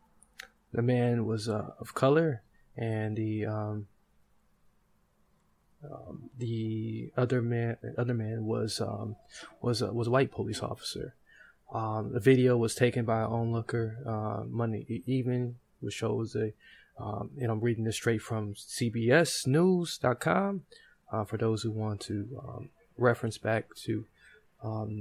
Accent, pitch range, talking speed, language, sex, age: American, 110-125 Hz, 135 wpm, English, male, 20-39